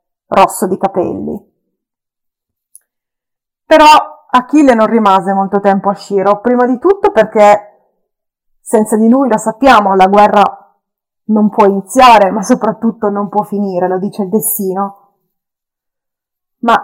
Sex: female